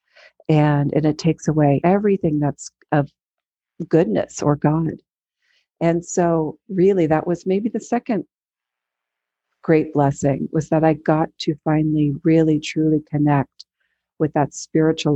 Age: 50-69